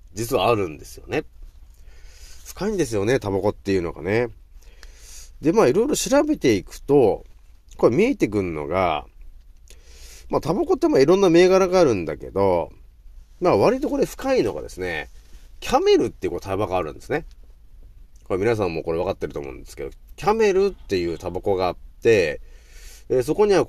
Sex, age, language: male, 30-49, Japanese